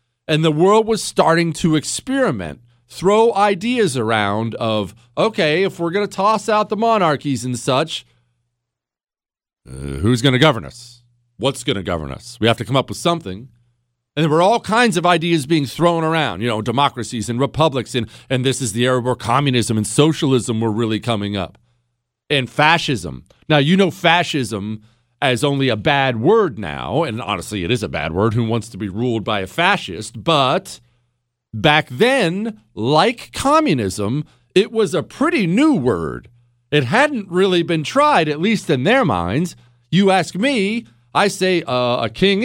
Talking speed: 175 wpm